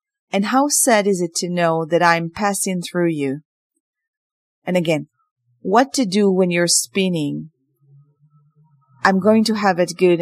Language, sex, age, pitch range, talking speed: Hebrew, female, 40-59, 165-215 Hz, 155 wpm